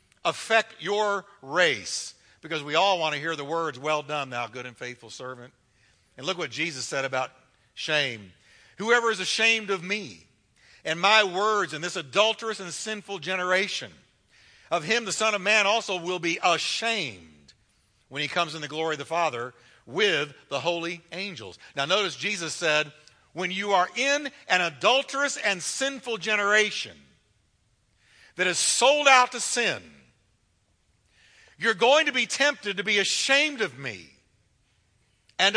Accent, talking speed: American, 155 wpm